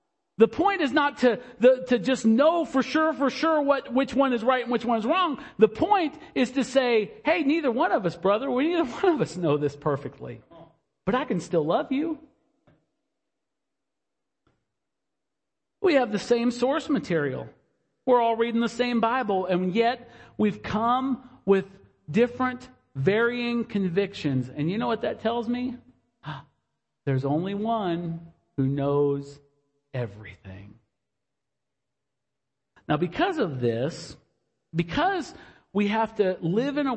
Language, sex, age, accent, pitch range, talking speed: English, male, 50-69, American, 170-265 Hz, 150 wpm